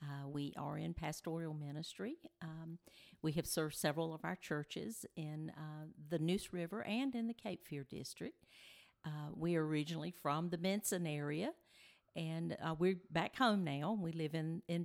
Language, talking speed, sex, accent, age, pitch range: English, 175 wpm, female, American, 50-69, 150-180 Hz